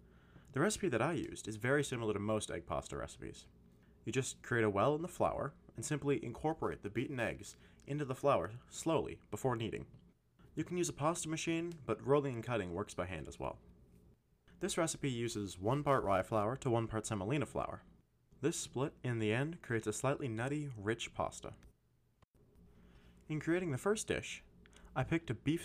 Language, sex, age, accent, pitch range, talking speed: English, male, 20-39, American, 85-140 Hz, 185 wpm